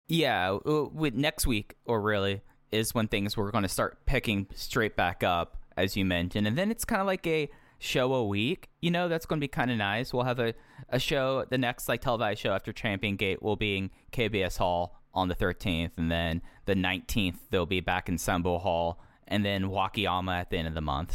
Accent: American